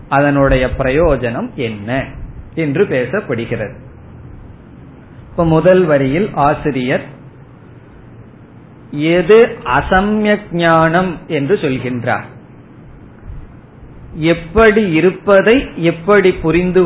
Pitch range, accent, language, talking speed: 130-165 Hz, native, Tamil, 60 wpm